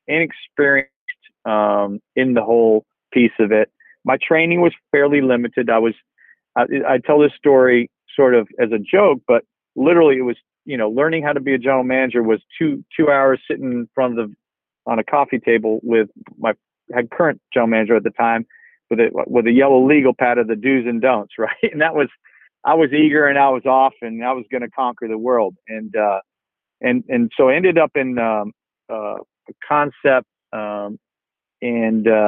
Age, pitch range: 40-59, 115-140 Hz